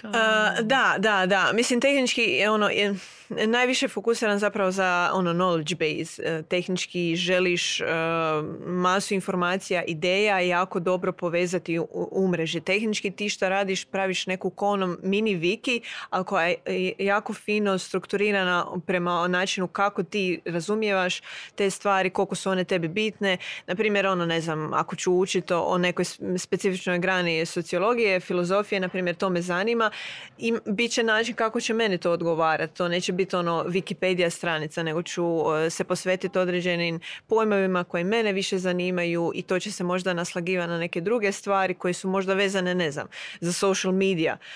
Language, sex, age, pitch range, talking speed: Croatian, female, 20-39, 175-205 Hz, 155 wpm